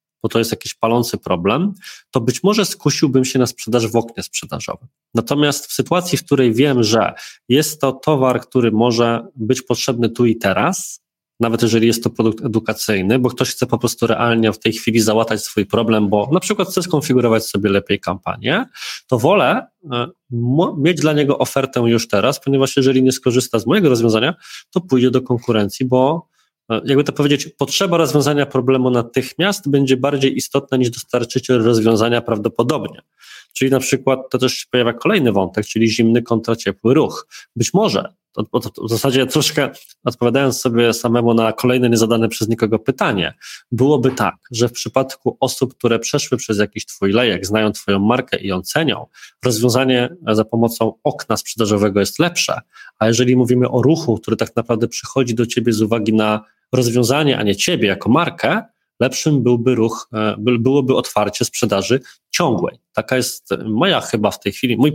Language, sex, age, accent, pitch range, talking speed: Polish, male, 20-39, native, 115-135 Hz, 165 wpm